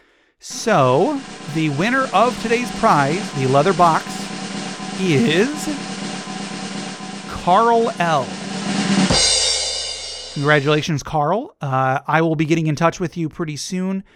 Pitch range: 145-195 Hz